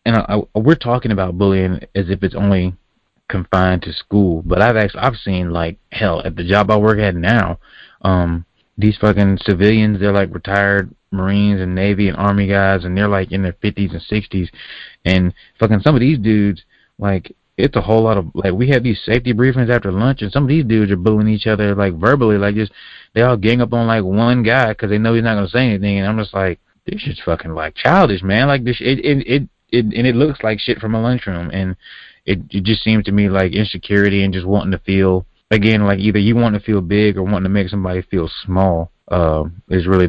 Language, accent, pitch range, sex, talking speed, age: English, American, 95-110 Hz, male, 230 wpm, 20-39